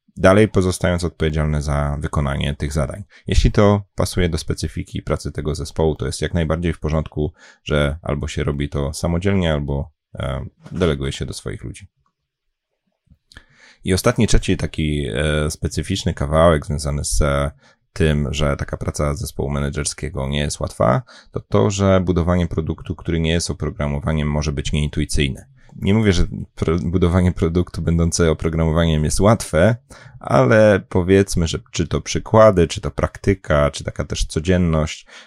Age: 30-49